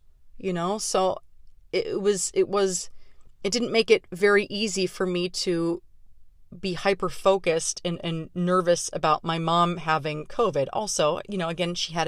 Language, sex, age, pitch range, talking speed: English, female, 30-49, 155-195 Hz, 160 wpm